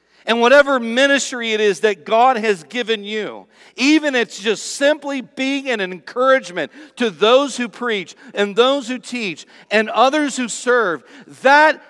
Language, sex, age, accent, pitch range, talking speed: English, male, 50-69, American, 165-220 Hz, 150 wpm